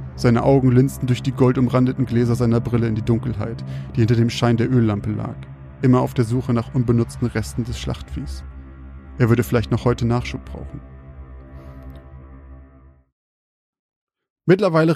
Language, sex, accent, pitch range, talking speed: German, male, German, 115-140 Hz, 145 wpm